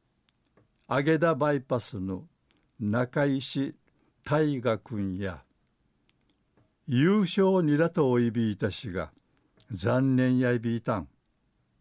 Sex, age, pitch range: male, 60-79, 115-145 Hz